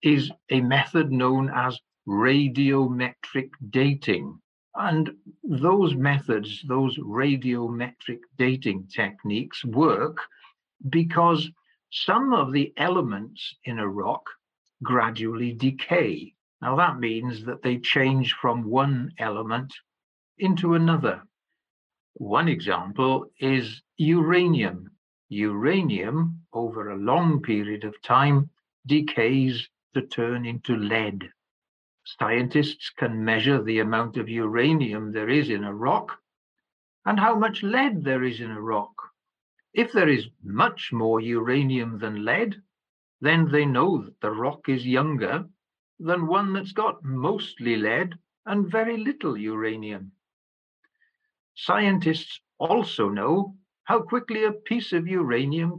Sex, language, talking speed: male, English, 115 wpm